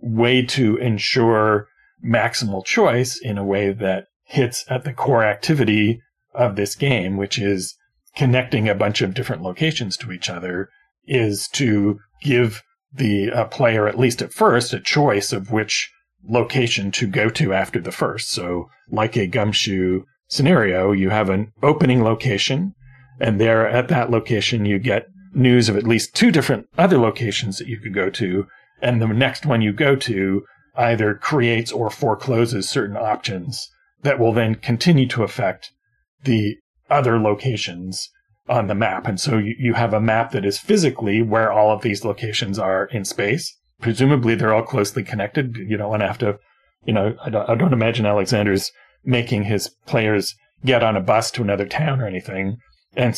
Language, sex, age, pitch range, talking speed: English, male, 40-59, 105-130 Hz, 175 wpm